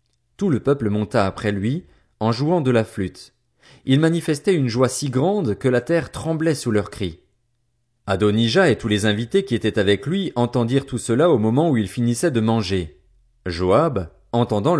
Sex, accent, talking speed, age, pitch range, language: male, French, 185 wpm, 40-59, 110-155 Hz, French